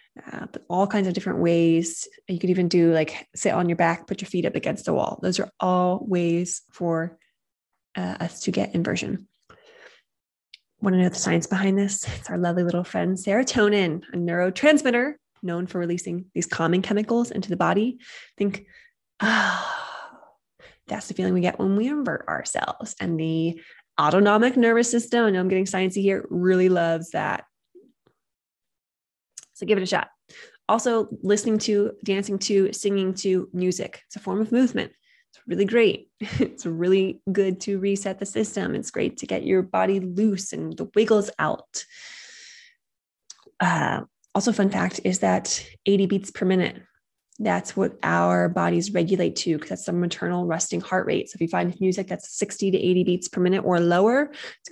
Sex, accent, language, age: female, American, English, 20-39